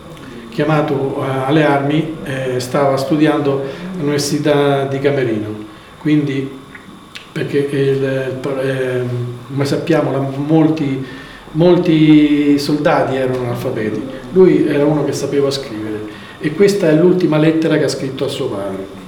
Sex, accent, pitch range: male, native, 130-155 Hz